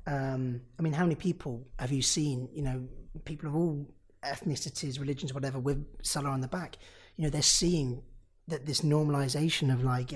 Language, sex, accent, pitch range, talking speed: English, male, British, 130-145 Hz, 185 wpm